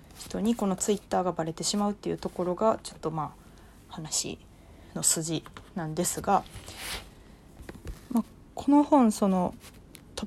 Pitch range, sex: 165-220 Hz, female